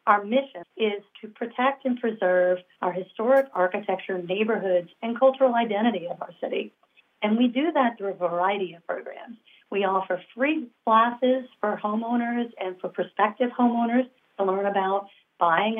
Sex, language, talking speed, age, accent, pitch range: female, English, 150 wpm, 40-59, American, 180-230 Hz